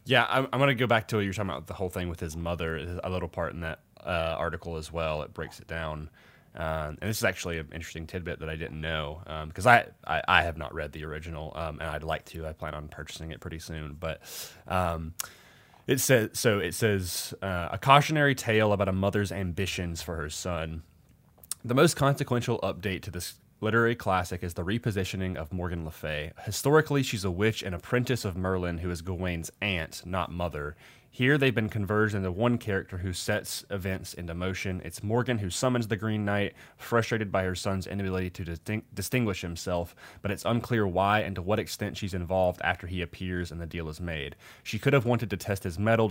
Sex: male